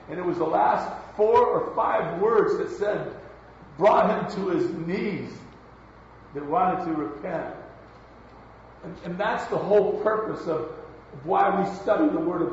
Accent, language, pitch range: American, English, 145-205 Hz